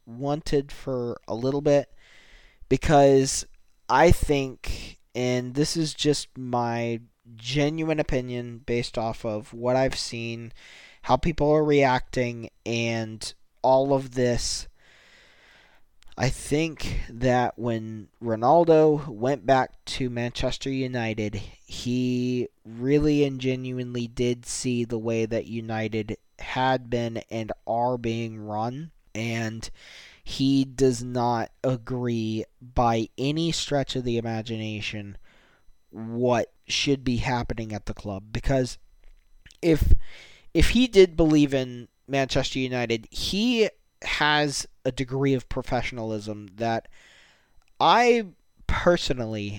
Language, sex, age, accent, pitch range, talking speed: English, male, 20-39, American, 115-140 Hz, 110 wpm